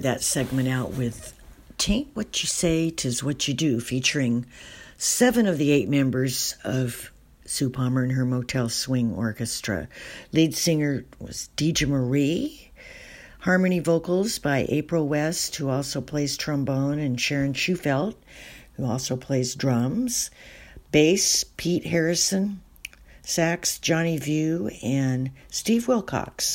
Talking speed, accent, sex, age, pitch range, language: 125 wpm, American, female, 60-79, 125-155 Hz, English